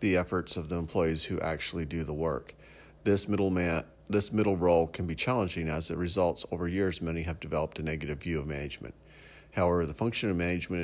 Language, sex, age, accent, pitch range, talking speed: English, male, 50-69, American, 75-85 Hz, 205 wpm